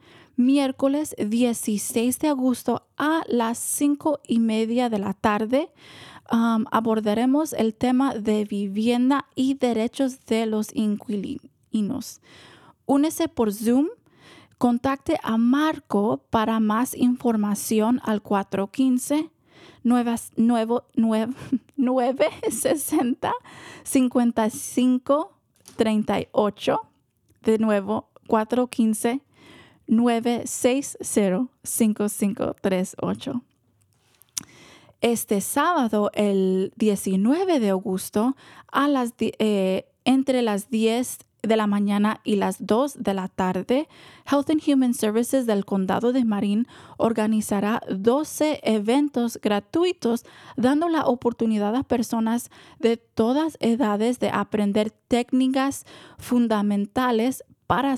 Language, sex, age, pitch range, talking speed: Spanish, female, 20-39, 215-265 Hz, 85 wpm